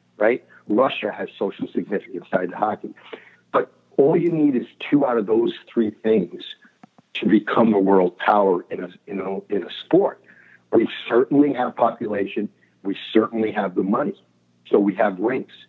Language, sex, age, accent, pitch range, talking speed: English, male, 60-79, American, 95-115 Hz, 170 wpm